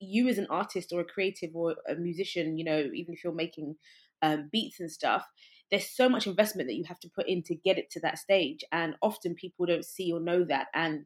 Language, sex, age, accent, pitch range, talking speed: English, female, 20-39, British, 165-195 Hz, 245 wpm